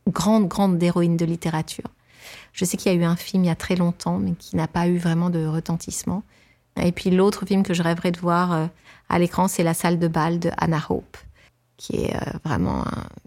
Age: 30-49